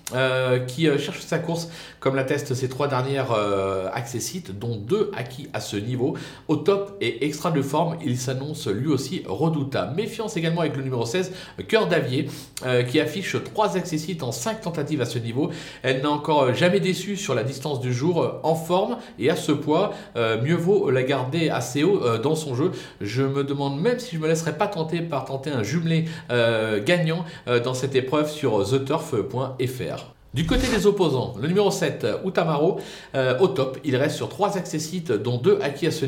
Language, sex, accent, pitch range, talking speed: French, male, French, 130-170 Hz, 200 wpm